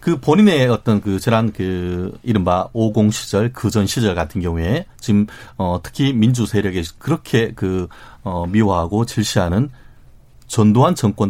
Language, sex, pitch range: Korean, male, 105-170 Hz